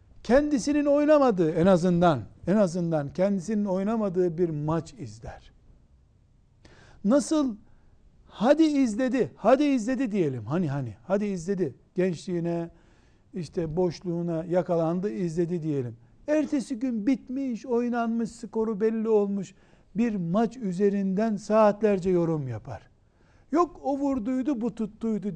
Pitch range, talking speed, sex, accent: 150-220 Hz, 105 wpm, male, native